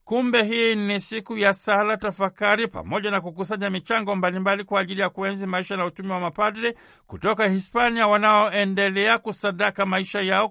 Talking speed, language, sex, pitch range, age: 155 wpm, Swahili, male, 190-215 Hz, 60-79